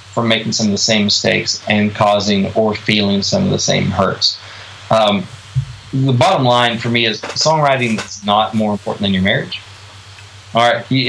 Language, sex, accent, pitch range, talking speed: English, male, American, 100-130 Hz, 190 wpm